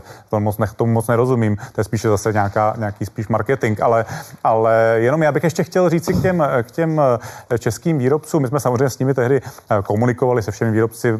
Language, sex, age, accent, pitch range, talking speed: Czech, male, 30-49, native, 110-125 Hz, 195 wpm